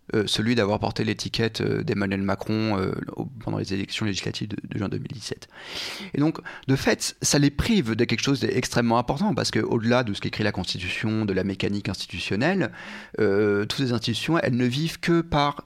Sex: male